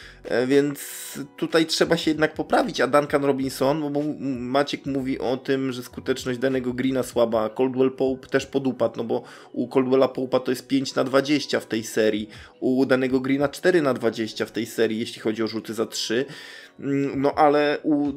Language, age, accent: Polish, 20-39, native